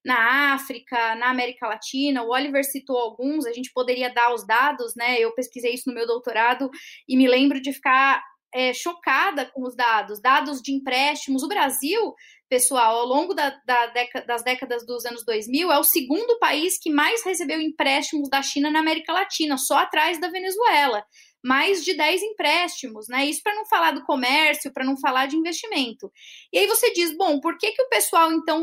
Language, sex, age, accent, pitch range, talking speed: Portuguese, female, 10-29, Brazilian, 255-315 Hz, 185 wpm